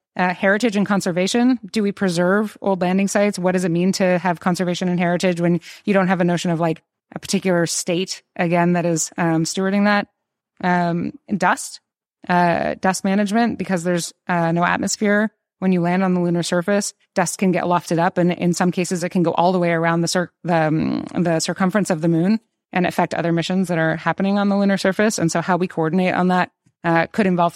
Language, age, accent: English, 20-39, American